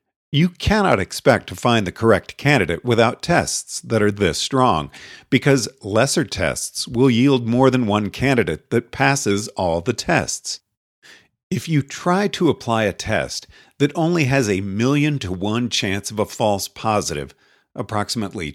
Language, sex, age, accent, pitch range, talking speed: English, male, 50-69, American, 105-140 Hz, 155 wpm